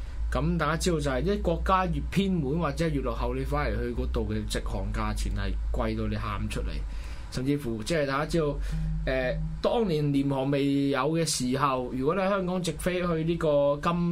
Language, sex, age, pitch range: Chinese, male, 20-39, 105-155 Hz